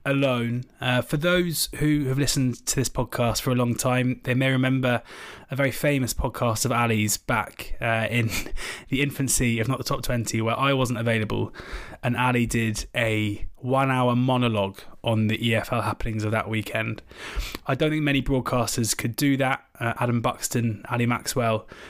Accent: British